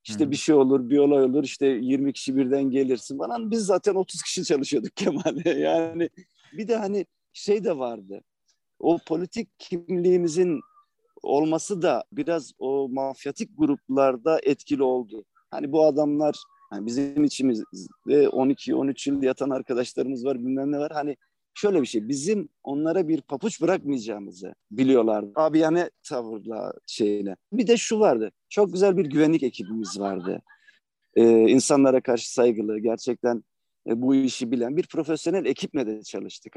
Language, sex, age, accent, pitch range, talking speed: Turkish, male, 50-69, native, 120-170 Hz, 145 wpm